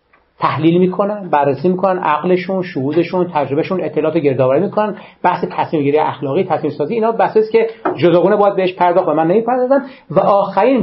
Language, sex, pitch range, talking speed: Persian, male, 145-210 Hz, 145 wpm